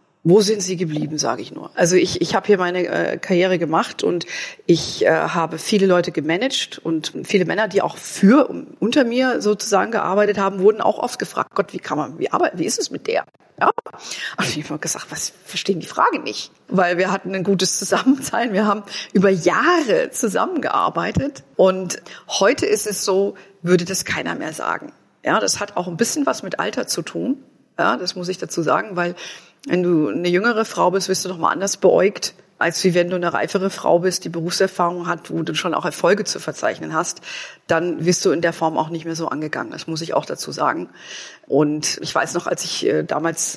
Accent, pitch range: German, 165-205 Hz